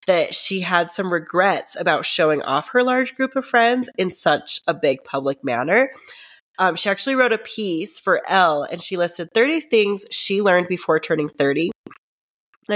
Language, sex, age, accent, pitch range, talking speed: English, female, 30-49, American, 170-220 Hz, 180 wpm